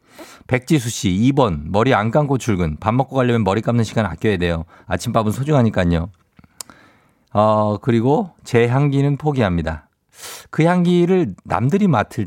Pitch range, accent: 95-150 Hz, native